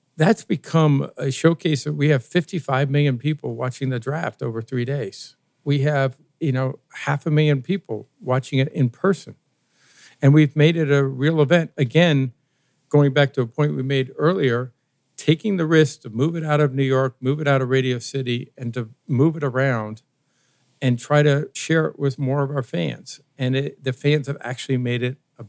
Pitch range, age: 130-155 Hz, 50-69